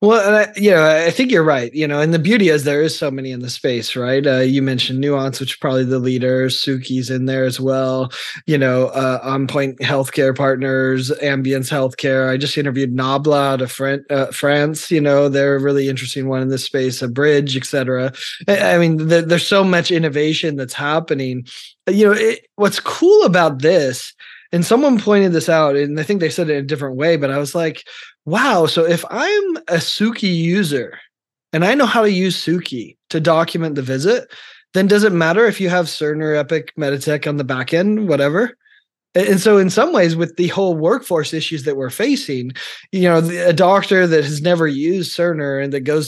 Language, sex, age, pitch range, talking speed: English, male, 20-39, 135-175 Hz, 205 wpm